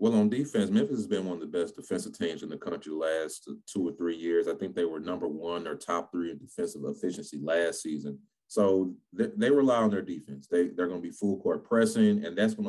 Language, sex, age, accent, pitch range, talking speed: English, male, 30-49, American, 85-130 Hz, 250 wpm